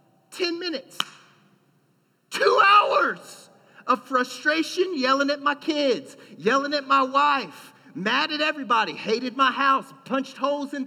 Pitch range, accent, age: 175-275 Hz, American, 40-59